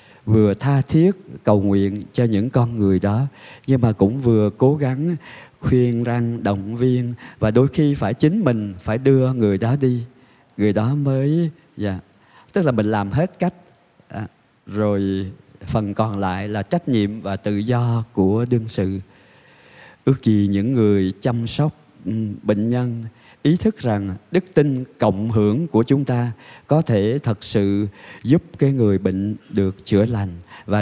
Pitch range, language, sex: 105-135 Hz, Vietnamese, male